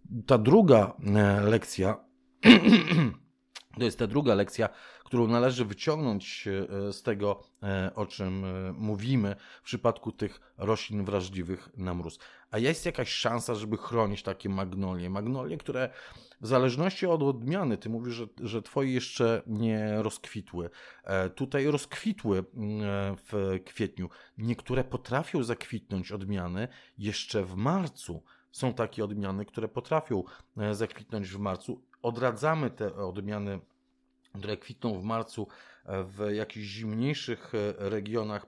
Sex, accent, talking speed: male, native, 115 wpm